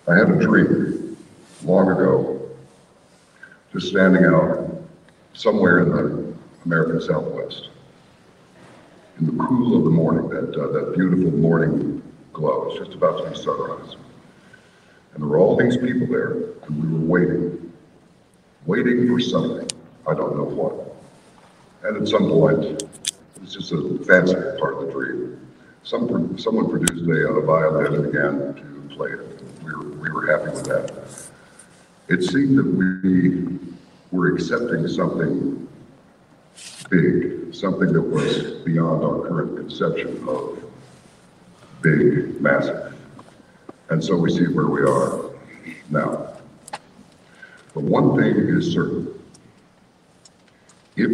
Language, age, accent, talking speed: English, 60-79, American, 135 wpm